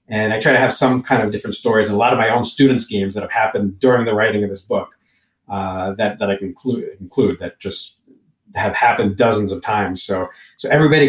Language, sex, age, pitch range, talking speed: English, male, 40-59, 100-130 Hz, 240 wpm